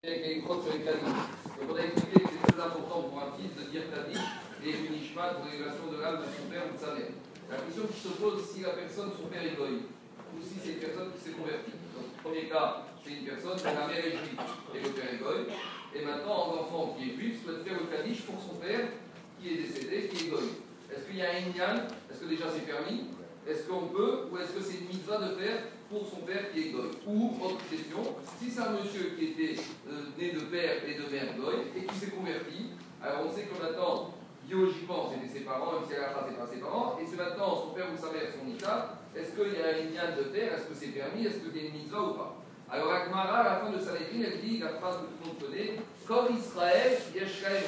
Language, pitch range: French, 160-215 Hz